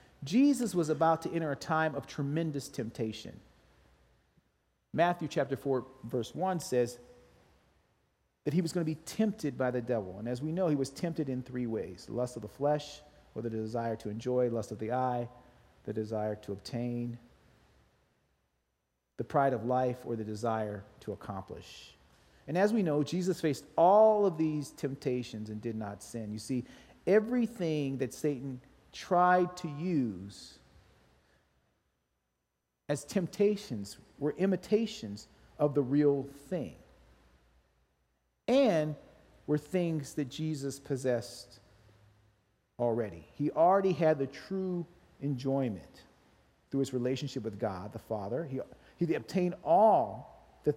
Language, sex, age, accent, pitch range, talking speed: English, male, 40-59, American, 110-155 Hz, 135 wpm